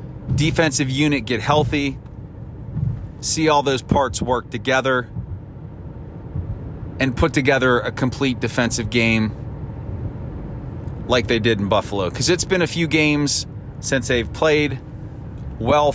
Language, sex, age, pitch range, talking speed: English, male, 30-49, 115-140 Hz, 120 wpm